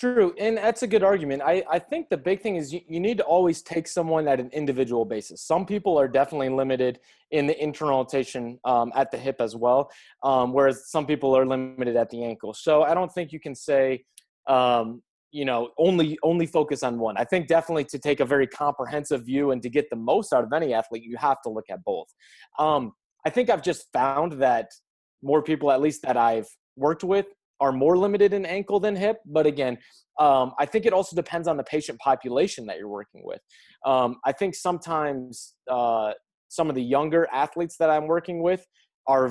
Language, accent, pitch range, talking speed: German, American, 130-175 Hz, 215 wpm